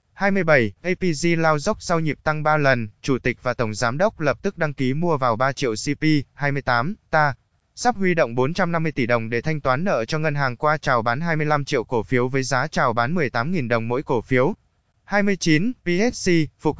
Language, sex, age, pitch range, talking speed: Vietnamese, male, 20-39, 130-165 Hz, 205 wpm